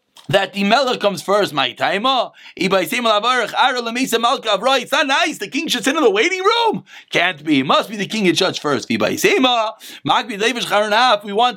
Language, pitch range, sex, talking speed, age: English, 220-285 Hz, male, 135 wpm, 30-49